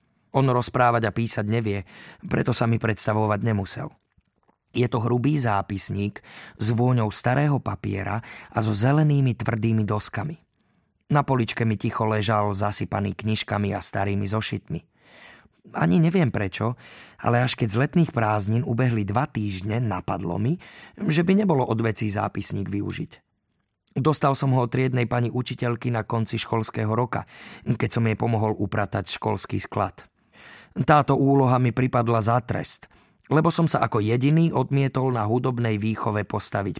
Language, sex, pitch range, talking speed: Slovak, male, 110-130 Hz, 140 wpm